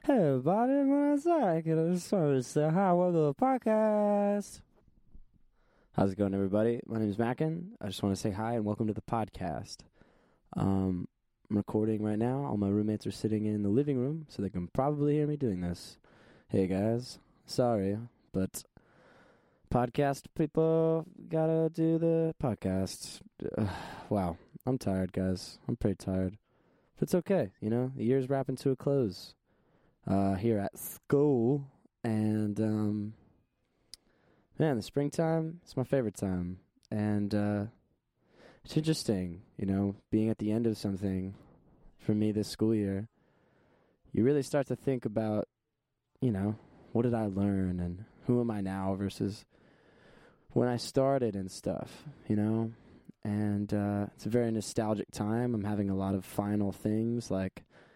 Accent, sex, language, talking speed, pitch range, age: American, male, English, 155 wpm, 100-140 Hz, 20-39